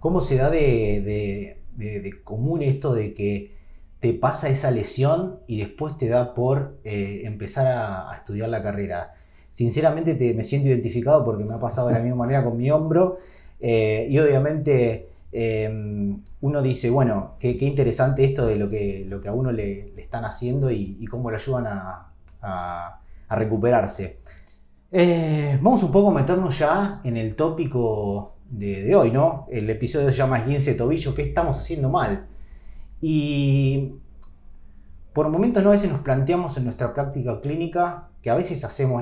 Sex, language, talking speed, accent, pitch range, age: male, Spanish, 170 wpm, Argentinian, 105-150 Hz, 30-49